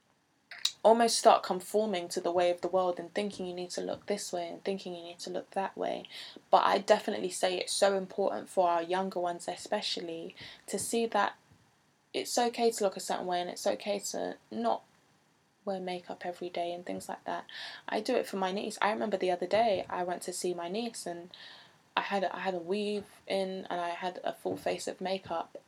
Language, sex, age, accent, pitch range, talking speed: English, female, 20-39, British, 180-215 Hz, 220 wpm